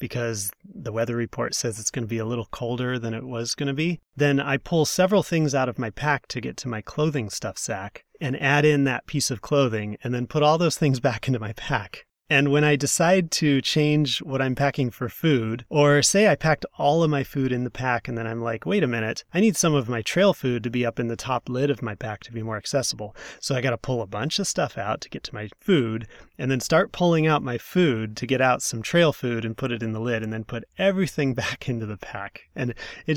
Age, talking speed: 30-49, 260 wpm